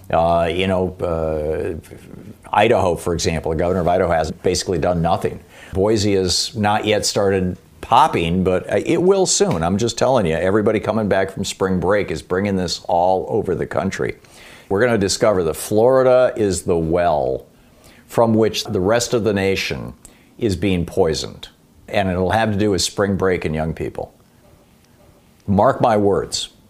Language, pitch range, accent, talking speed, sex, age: English, 90-115 Hz, American, 170 wpm, male, 50-69